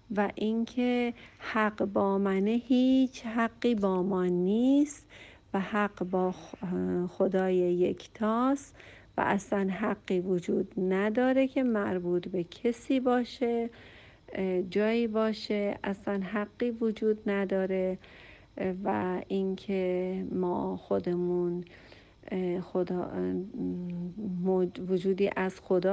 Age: 50-69